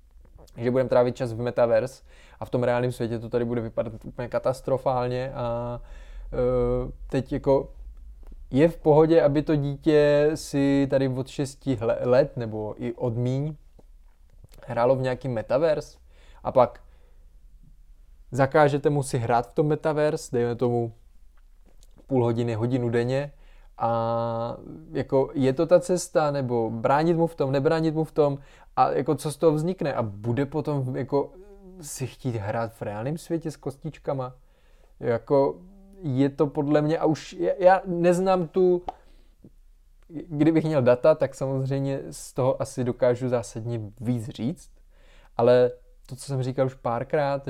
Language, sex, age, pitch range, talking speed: Czech, male, 20-39, 115-145 Hz, 150 wpm